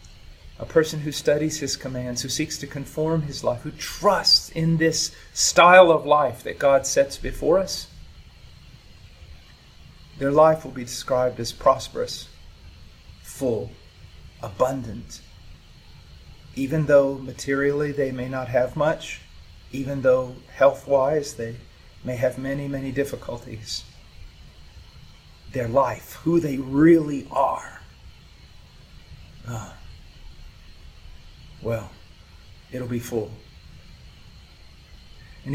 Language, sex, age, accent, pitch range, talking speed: English, male, 40-59, American, 90-145 Hz, 105 wpm